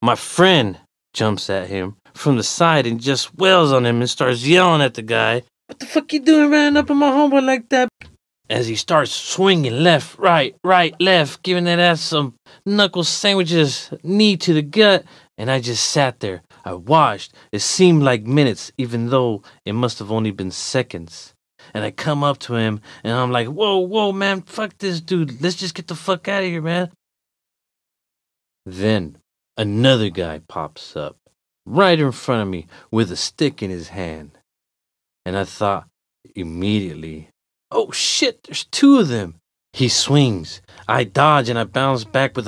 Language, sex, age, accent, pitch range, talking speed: English, male, 30-49, American, 110-175 Hz, 180 wpm